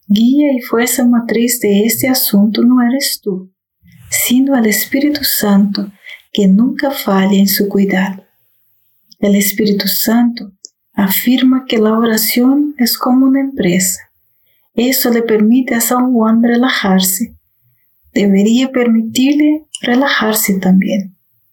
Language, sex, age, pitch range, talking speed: Spanish, female, 40-59, 200-250 Hz, 115 wpm